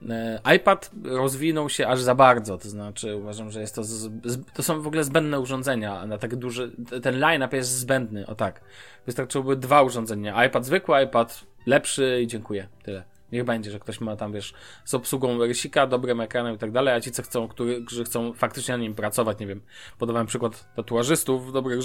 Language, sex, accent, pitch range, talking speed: Polish, male, native, 110-130 Hz, 195 wpm